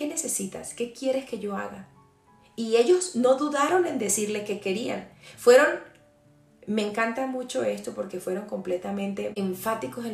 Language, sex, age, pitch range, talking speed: Spanish, female, 30-49, 180-225 Hz, 150 wpm